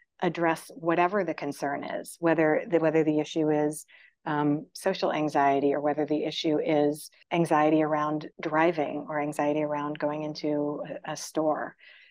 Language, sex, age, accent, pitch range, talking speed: English, female, 40-59, American, 150-170 Hz, 150 wpm